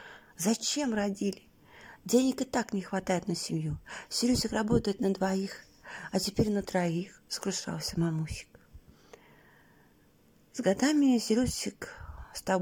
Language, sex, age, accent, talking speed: Russian, female, 40-59, native, 115 wpm